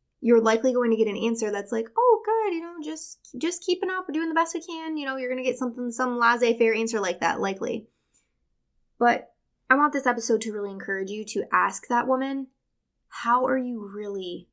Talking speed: 215 wpm